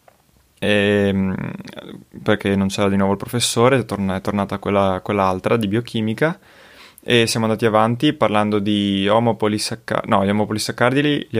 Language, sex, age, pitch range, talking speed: Italian, male, 20-39, 100-115 Hz, 140 wpm